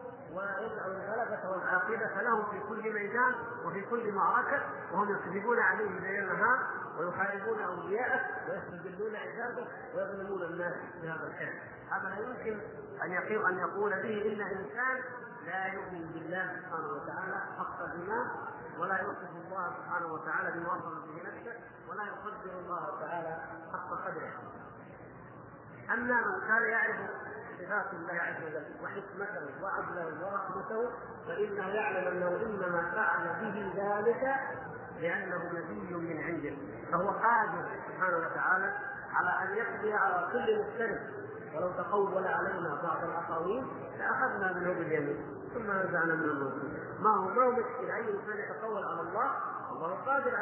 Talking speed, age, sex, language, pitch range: 125 wpm, 40-59, male, Arabic, 175-230 Hz